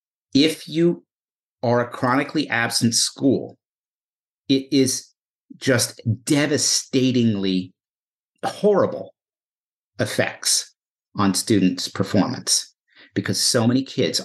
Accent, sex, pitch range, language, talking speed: American, male, 110-145 Hz, English, 85 wpm